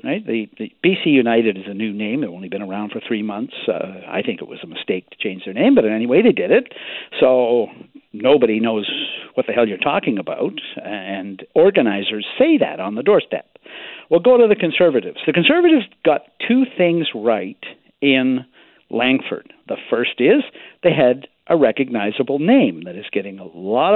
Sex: male